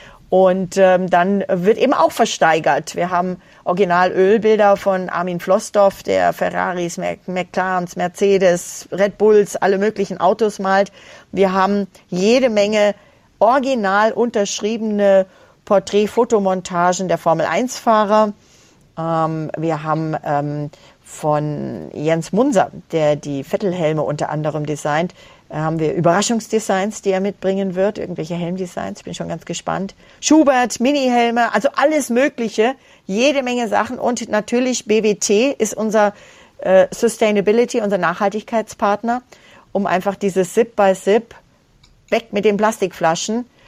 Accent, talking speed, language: German, 120 wpm, German